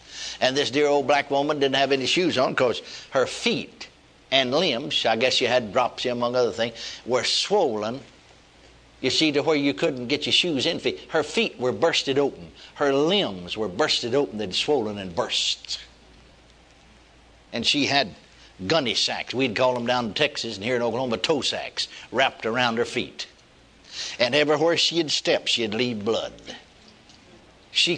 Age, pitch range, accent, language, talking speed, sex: 60-79, 120-155 Hz, American, English, 170 wpm, male